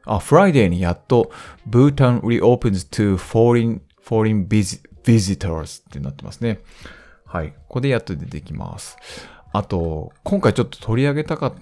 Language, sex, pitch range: Japanese, male, 90-135 Hz